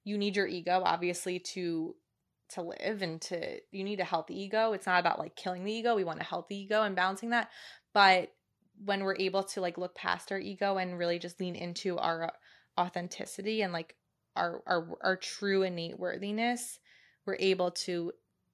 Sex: female